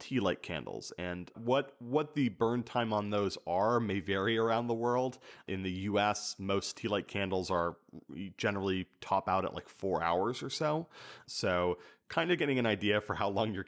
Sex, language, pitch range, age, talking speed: male, German, 95-125 Hz, 30-49, 195 wpm